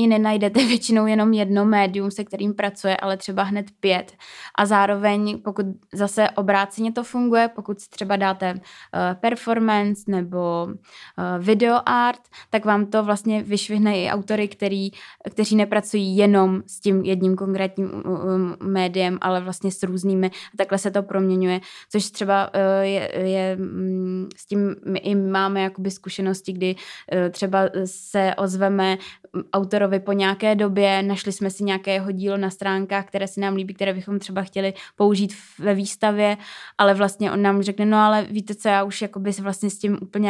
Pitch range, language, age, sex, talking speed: 190-210 Hz, Czech, 20-39, female, 155 wpm